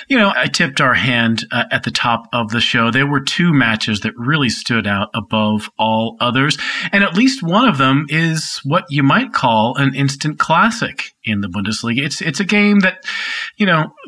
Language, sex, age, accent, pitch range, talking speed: English, male, 40-59, American, 120-170 Hz, 205 wpm